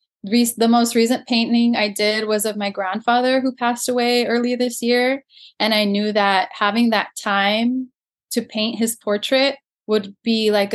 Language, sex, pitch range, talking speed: English, female, 205-240 Hz, 175 wpm